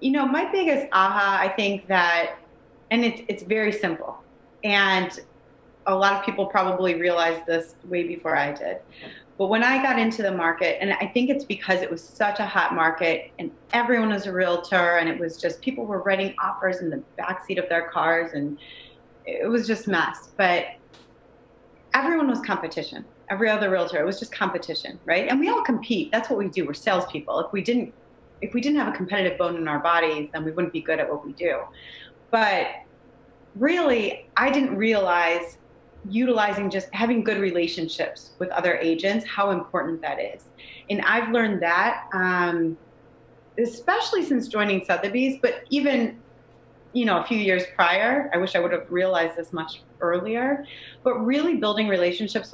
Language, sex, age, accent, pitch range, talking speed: English, female, 30-49, American, 170-235 Hz, 180 wpm